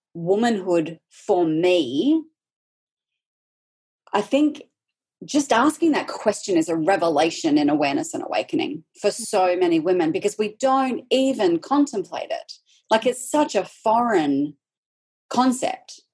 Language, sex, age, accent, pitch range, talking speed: English, female, 30-49, Australian, 175-280 Hz, 120 wpm